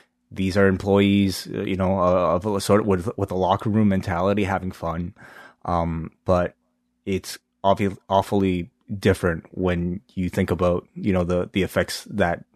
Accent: American